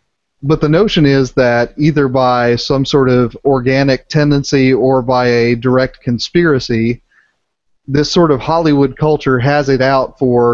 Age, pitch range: 30-49, 120-140 Hz